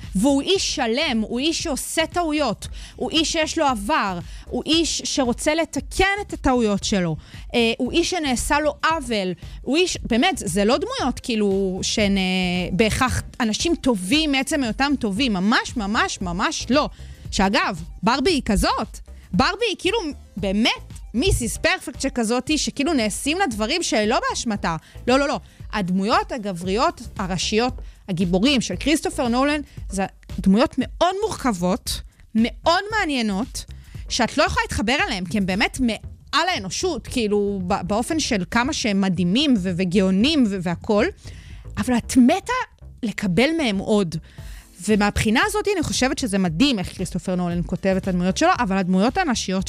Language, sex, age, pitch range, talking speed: Hebrew, female, 30-49, 200-305 Hz, 140 wpm